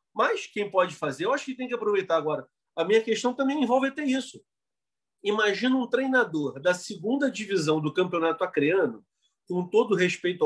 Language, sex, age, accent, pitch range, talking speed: Portuguese, male, 40-59, Brazilian, 185-250 Hz, 170 wpm